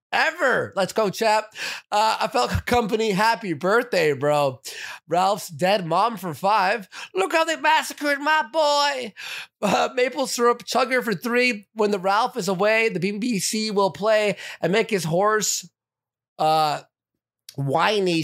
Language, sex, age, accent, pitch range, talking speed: English, male, 30-49, American, 180-245 Hz, 140 wpm